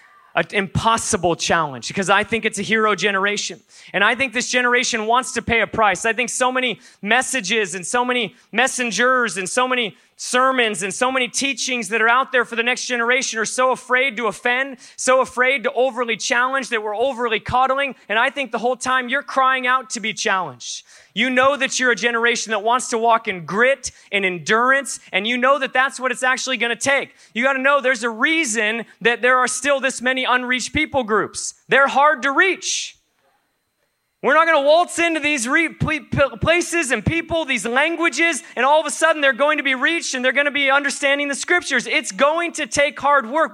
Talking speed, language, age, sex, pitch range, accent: 210 wpm, English, 20-39, male, 230-280 Hz, American